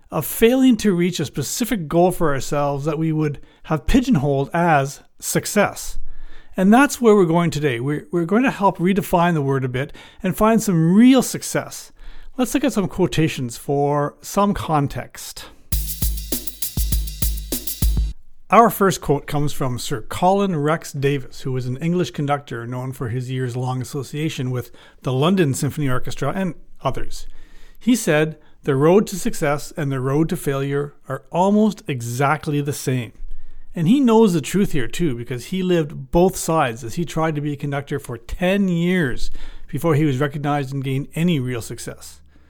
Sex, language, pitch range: male, English, 135-180 Hz